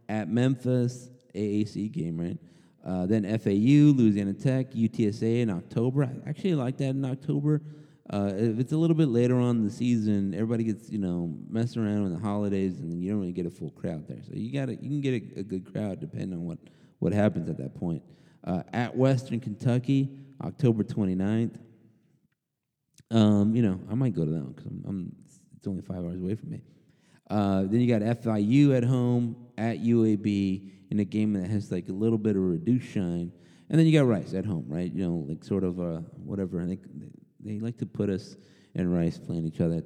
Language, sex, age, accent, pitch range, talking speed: English, male, 30-49, American, 95-125 Hz, 215 wpm